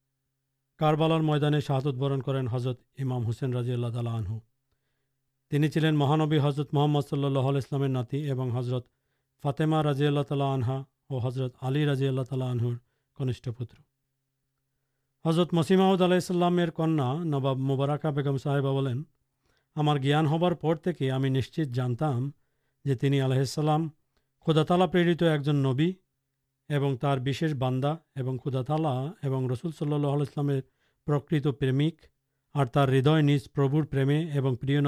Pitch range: 135-150 Hz